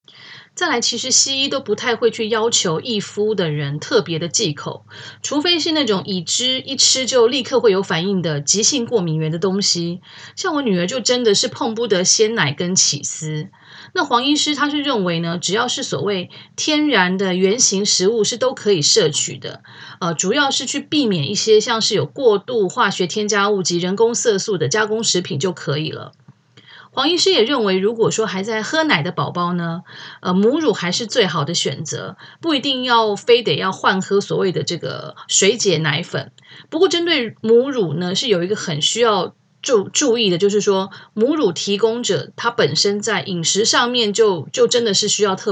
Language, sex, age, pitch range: Chinese, female, 30-49, 175-240 Hz